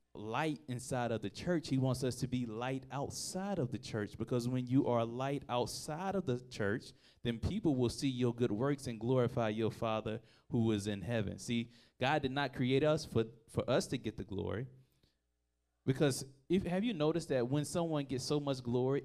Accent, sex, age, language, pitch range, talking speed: American, male, 20-39, English, 115-140 Hz, 200 wpm